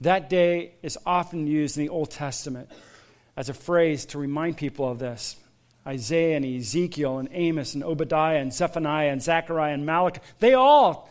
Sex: male